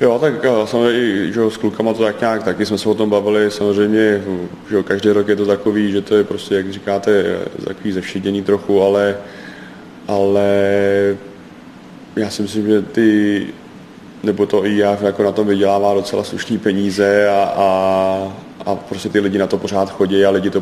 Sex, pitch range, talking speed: male, 95-100 Hz, 185 wpm